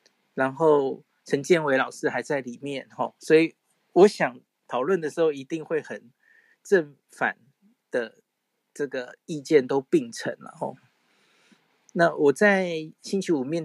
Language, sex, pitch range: Chinese, male, 135-195 Hz